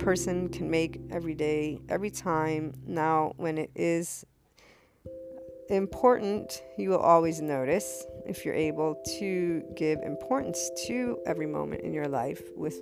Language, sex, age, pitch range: English, female, 40-59, 145-175 Hz